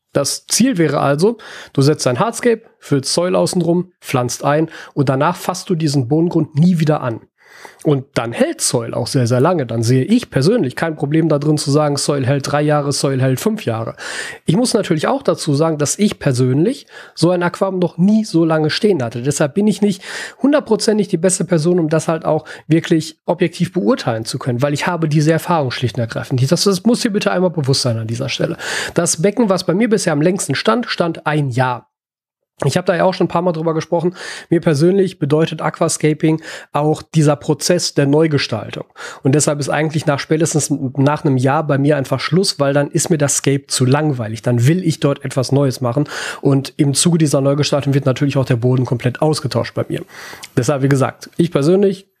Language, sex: German, male